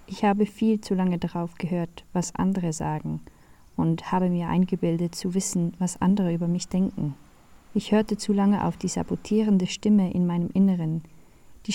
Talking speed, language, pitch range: 170 wpm, German, 175-210 Hz